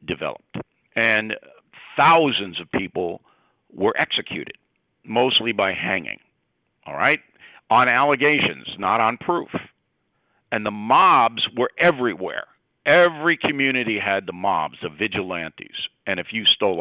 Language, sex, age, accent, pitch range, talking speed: English, male, 50-69, American, 105-145 Hz, 120 wpm